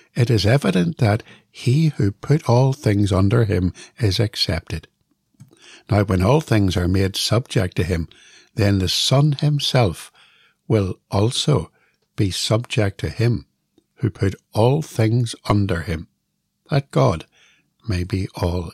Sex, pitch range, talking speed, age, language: male, 90-120 Hz, 140 wpm, 60-79, English